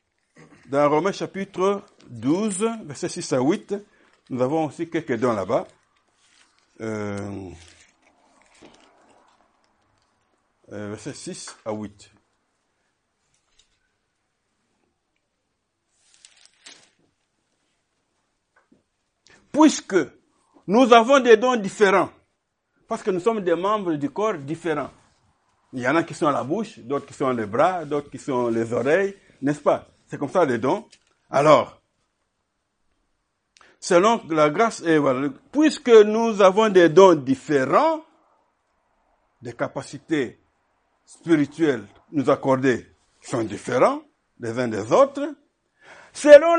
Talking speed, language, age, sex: 105 wpm, French, 60-79, male